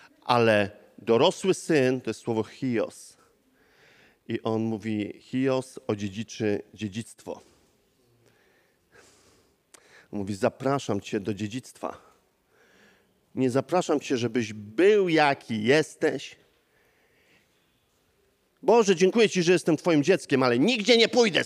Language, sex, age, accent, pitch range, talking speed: Polish, male, 40-59, native, 125-185 Hz, 100 wpm